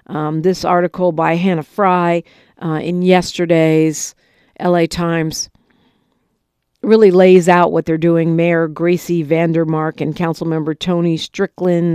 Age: 50-69